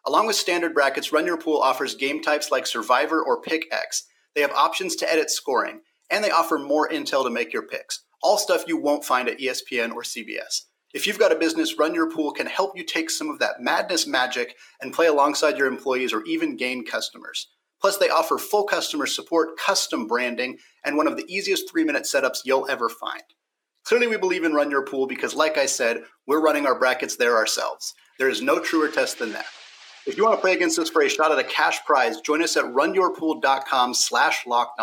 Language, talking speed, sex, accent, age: English, 220 wpm, male, American, 30-49